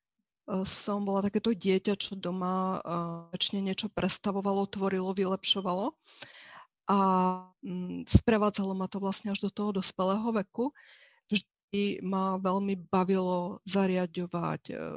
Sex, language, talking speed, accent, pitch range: female, Czech, 100 wpm, native, 185-220 Hz